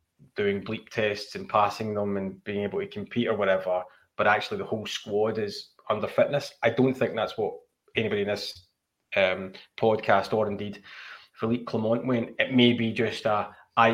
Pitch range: 105-120 Hz